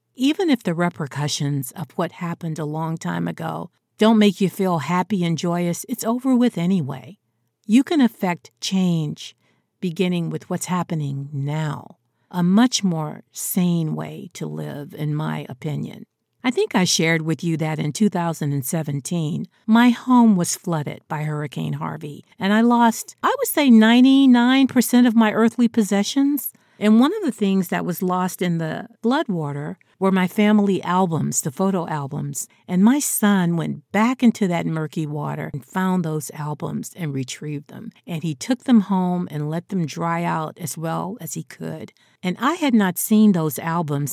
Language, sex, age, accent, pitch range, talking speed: English, female, 50-69, American, 155-215 Hz, 170 wpm